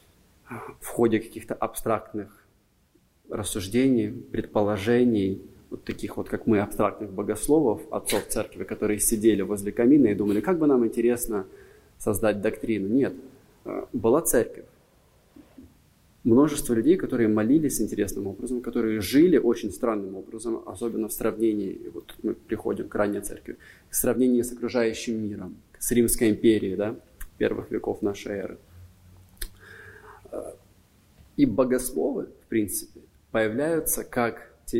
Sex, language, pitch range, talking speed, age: male, Russian, 105-120 Hz, 120 wpm, 20-39